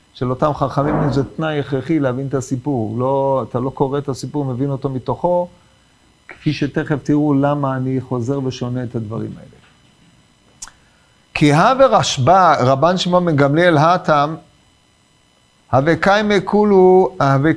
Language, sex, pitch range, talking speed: Hebrew, male, 130-170 Hz, 120 wpm